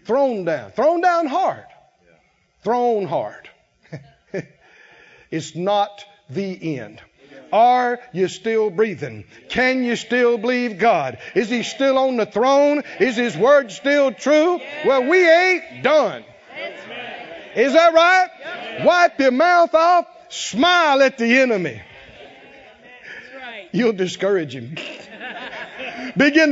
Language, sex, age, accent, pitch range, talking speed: English, male, 50-69, American, 185-280 Hz, 115 wpm